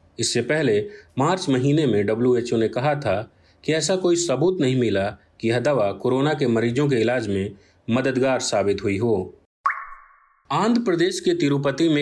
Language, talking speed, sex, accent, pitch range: Hindi, 165 wpm, male, native, 115-150 Hz